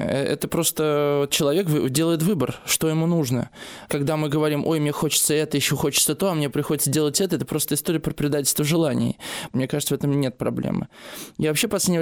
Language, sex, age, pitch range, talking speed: Russian, male, 20-39, 140-160 Hz, 195 wpm